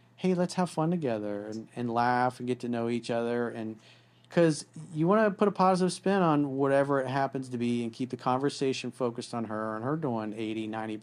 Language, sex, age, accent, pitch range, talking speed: English, male, 40-59, American, 115-155 Hz, 220 wpm